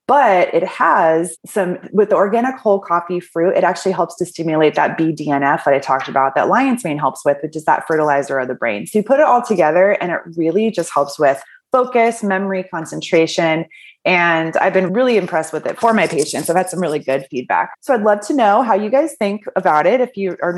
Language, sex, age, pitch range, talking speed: English, female, 20-39, 160-210 Hz, 225 wpm